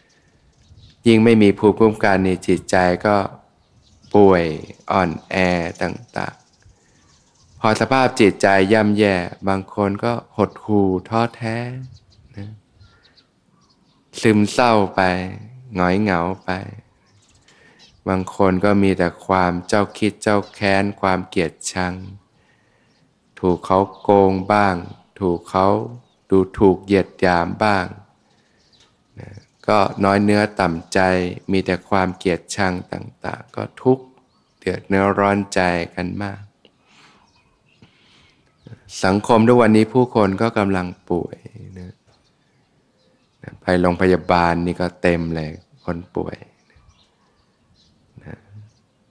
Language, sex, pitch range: Thai, male, 90-105 Hz